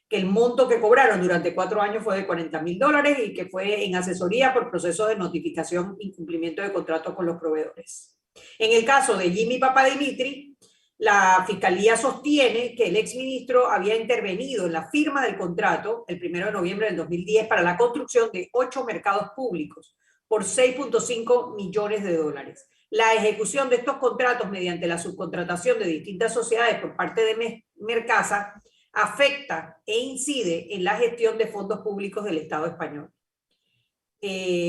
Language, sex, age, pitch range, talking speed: Spanish, female, 40-59, 175-245 Hz, 165 wpm